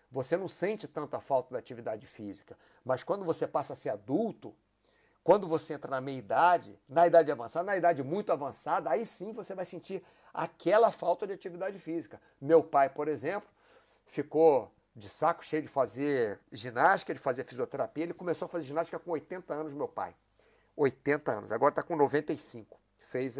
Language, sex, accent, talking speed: Portuguese, male, Brazilian, 175 wpm